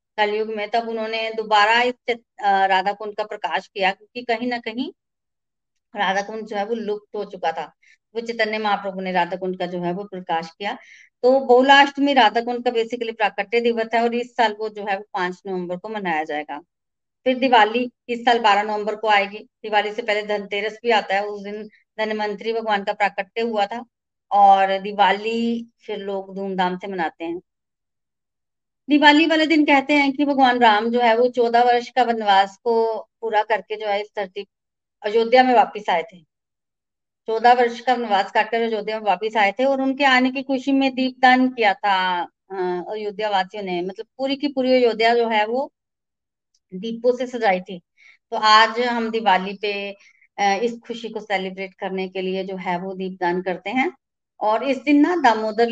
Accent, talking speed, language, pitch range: native, 185 wpm, Hindi, 195-235 Hz